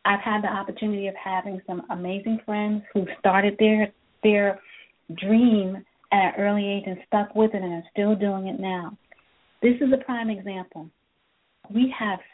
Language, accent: English, American